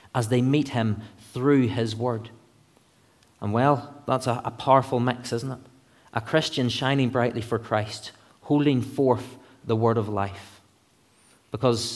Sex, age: male, 30-49